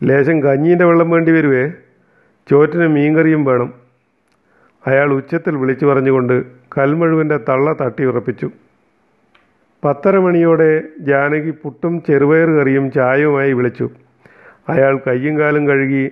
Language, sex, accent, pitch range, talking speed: Malayalam, male, native, 135-155 Hz, 95 wpm